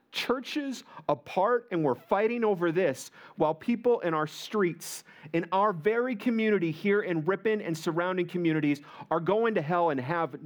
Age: 40-59